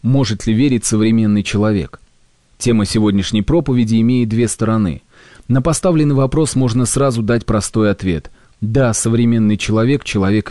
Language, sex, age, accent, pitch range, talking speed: Russian, male, 30-49, native, 100-125 Hz, 130 wpm